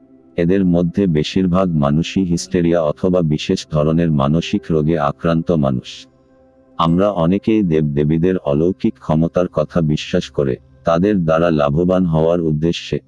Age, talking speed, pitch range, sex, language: 50-69, 115 wpm, 75-90 Hz, male, Bengali